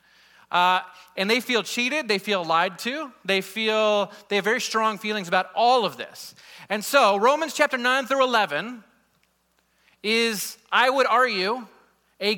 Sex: male